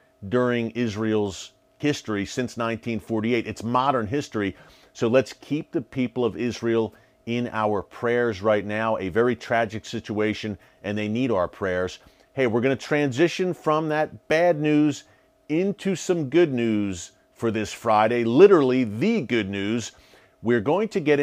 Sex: male